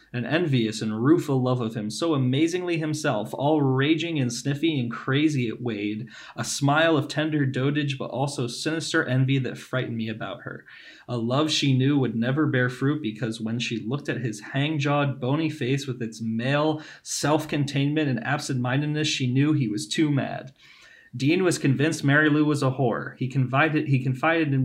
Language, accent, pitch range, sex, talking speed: English, American, 125-150 Hz, male, 180 wpm